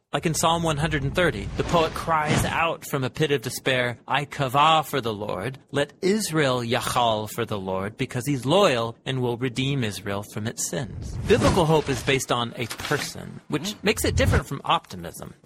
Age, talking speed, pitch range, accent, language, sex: 30-49, 185 wpm, 125-170 Hz, American, English, male